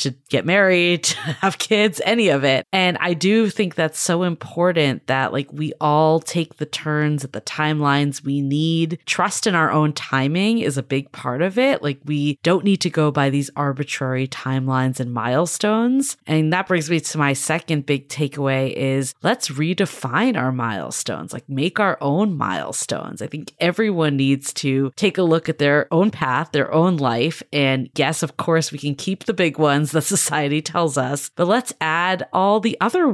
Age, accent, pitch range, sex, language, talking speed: 20-39, American, 140-180 Hz, female, English, 190 wpm